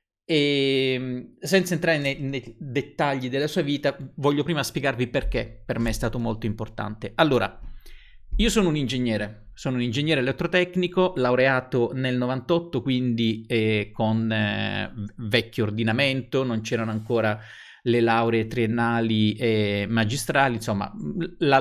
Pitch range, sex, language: 115-150 Hz, male, Italian